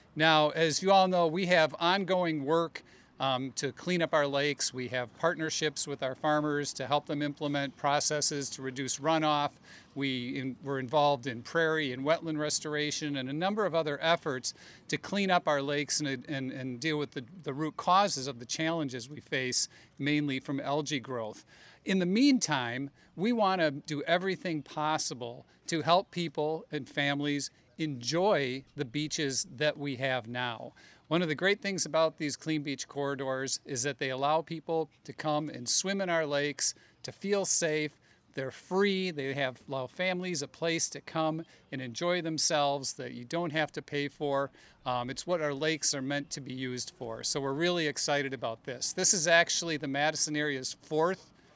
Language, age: English, 50-69